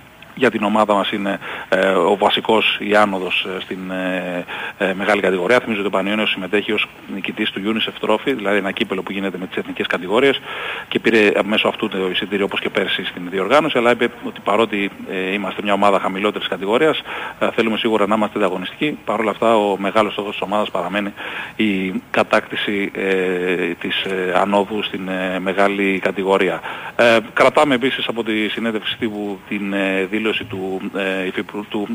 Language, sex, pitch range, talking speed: Greek, male, 95-110 Hz, 180 wpm